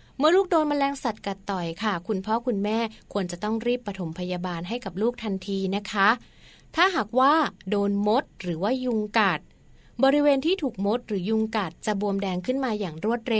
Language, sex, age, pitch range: Thai, female, 20-39, 185-235 Hz